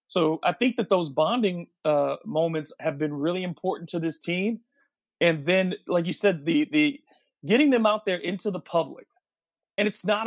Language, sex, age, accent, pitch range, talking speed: English, male, 40-59, American, 155-185 Hz, 185 wpm